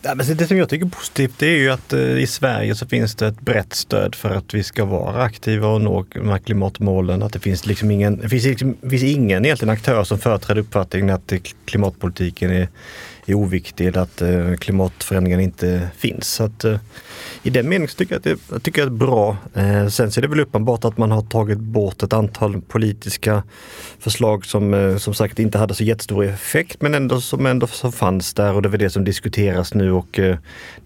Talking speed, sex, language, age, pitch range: 220 wpm, male, Swedish, 30-49, 95-120 Hz